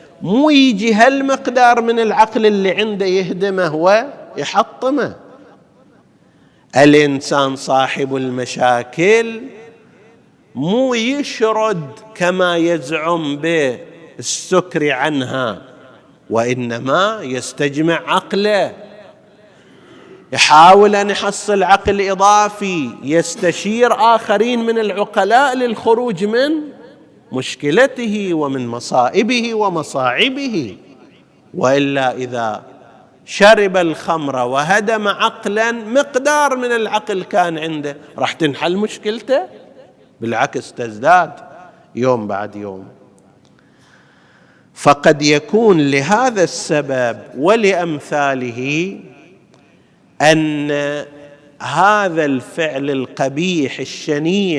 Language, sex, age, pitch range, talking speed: Arabic, male, 50-69, 145-220 Hz, 70 wpm